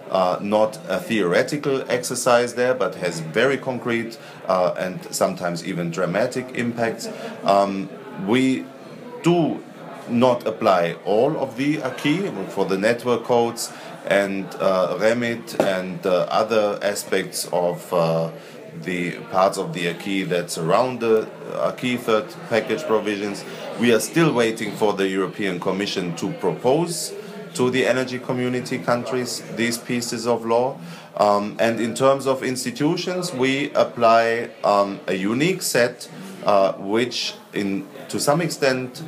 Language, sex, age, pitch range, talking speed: English, male, 40-59, 100-130 Hz, 130 wpm